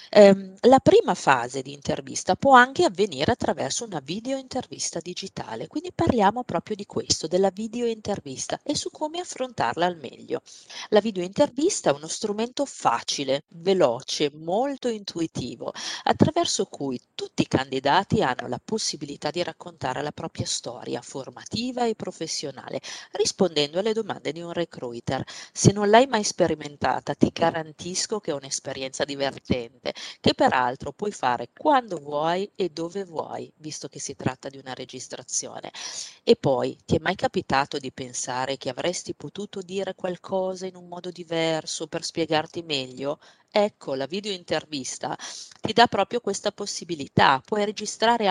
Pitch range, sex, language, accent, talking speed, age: 145-215 Hz, female, Italian, native, 140 wpm, 40-59